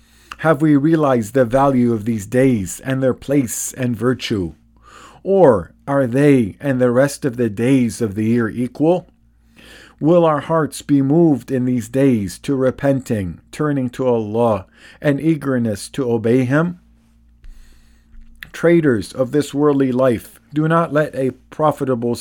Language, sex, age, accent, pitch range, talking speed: English, male, 50-69, American, 115-145 Hz, 145 wpm